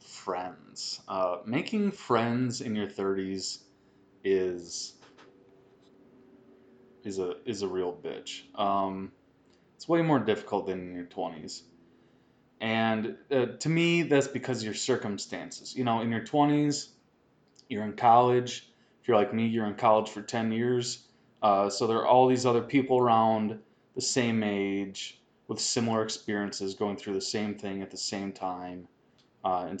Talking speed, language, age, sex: 155 wpm, English, 20-39, male